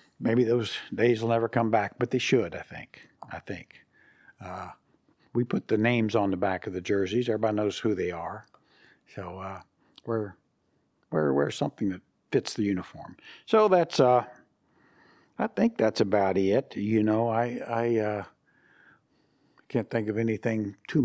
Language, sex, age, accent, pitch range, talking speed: English, male, 60-79, American, 105-120 Hz, 160 wpm